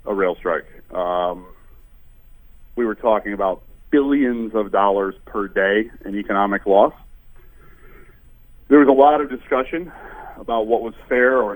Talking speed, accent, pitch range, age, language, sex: 140 wpm, American, 95-125 Hz, 40-59, English, male